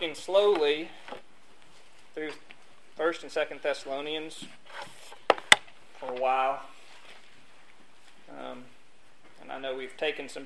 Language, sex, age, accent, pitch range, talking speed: English, male, 40-59, American, 130-160 Hz, 90 wpm